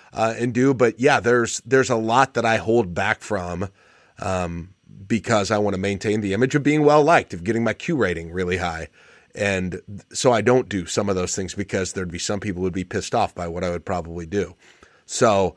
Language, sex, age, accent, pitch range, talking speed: English, male, 30-49, American, 90-110 Hz, 225 wpm